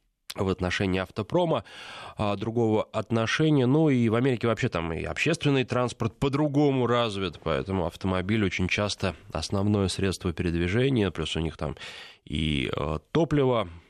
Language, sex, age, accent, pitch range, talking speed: Russian, male, 20-39, native, 90-115 Hz, 135 wpm